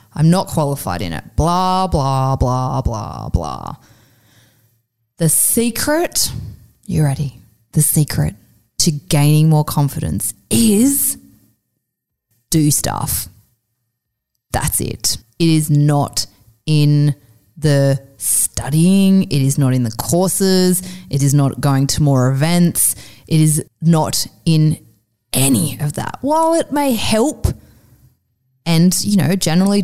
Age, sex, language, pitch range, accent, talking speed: 20-39, female, English, 130-185 Hz, Australian, 120 wpm